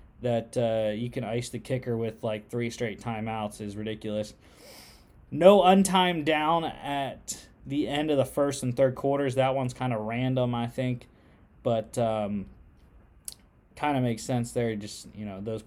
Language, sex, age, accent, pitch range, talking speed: English, male, 20-39, American, 110-135 Hz, 165 wpm